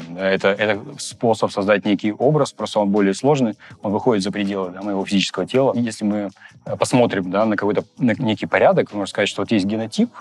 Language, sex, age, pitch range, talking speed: Russian, male, 30-49, 95-110 Hz, 195 wpm